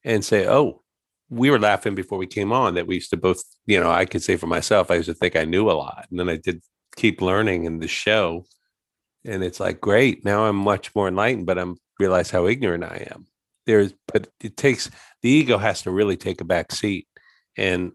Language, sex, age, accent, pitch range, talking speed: English, male, 50-69, American, 90-115 Hz, 230 wpm